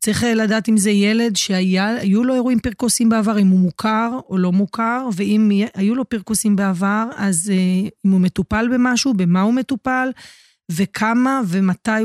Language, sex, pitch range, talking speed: Hebrew, female, 190-225 Hz, 155 wpm